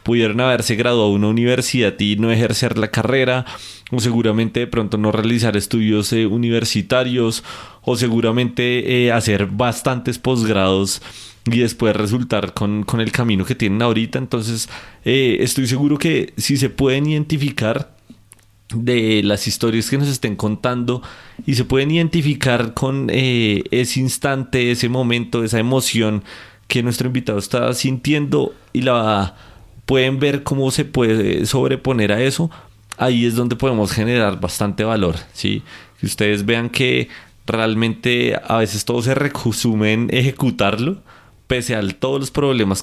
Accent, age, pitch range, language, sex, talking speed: Colombian, 30-49, 110-130 Hz, Spanish, male, 150 wpm